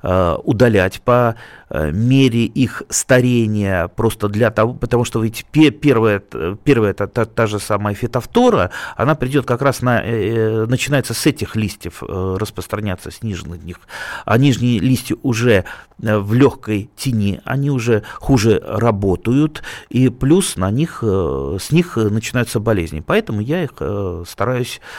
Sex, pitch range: male, 100-130 Hz